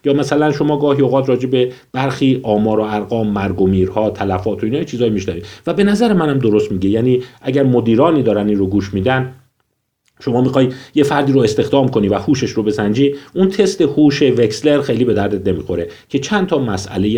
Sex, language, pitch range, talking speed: male, Persian, 100-140 Hz, 190 wpm